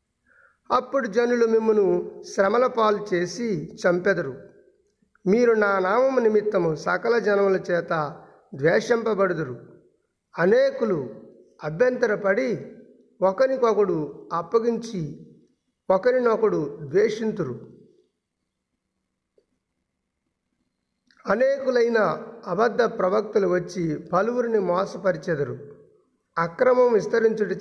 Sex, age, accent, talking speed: male, 50-69, native, 60 wpm